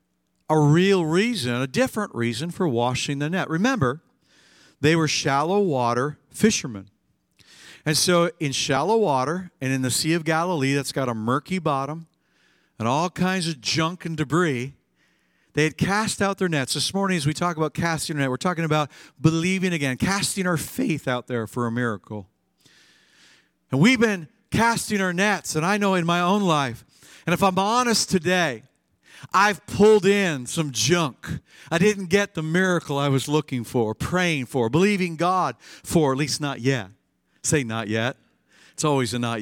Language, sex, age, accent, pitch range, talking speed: English, male, 50-69, American, 135-180 Hz, 175 wpm